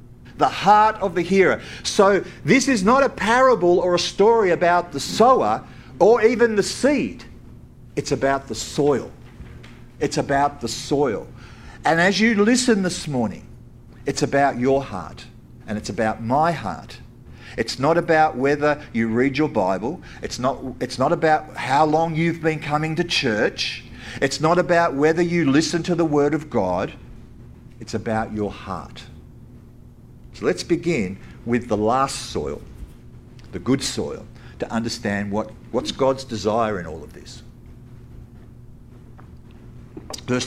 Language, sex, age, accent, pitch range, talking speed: English, male, 50-69, Australian, 120-165 Hz, 150 wpm